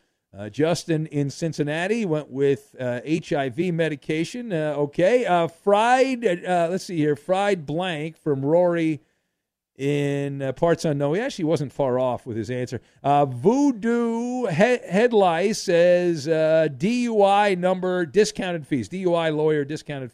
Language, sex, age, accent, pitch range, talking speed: English, male, 50-69, American, 140-200 Hz, 135 wpm